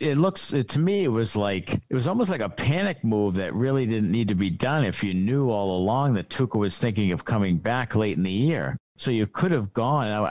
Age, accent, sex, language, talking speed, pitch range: 50-69, American, male, English, 250 wpm, 100-130 Hz